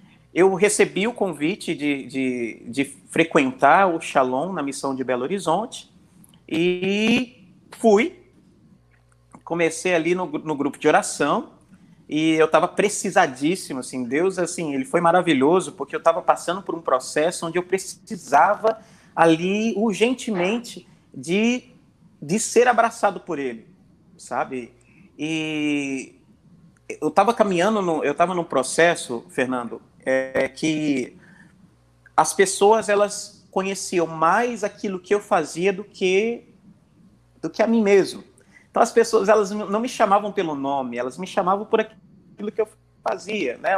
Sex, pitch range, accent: male, 155-205 Hz, Brazilian